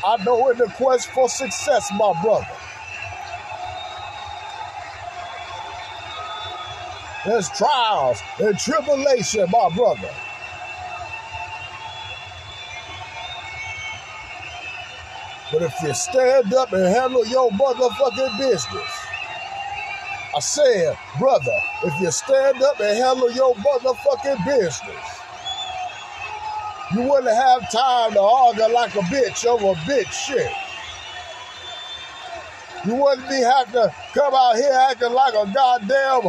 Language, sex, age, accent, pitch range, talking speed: English, male, 50-69, American, 240-300 Hz, 100 wpm